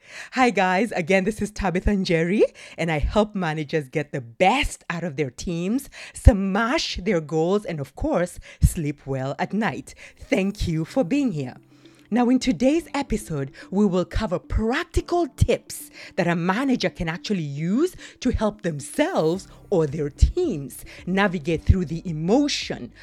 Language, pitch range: English, 160-225 Hz